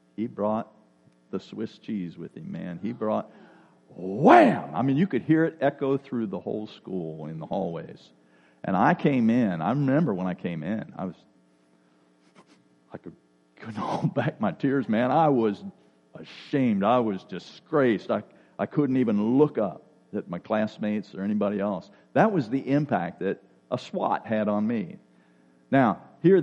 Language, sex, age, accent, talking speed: English, male, 50-69, American, 170 wpm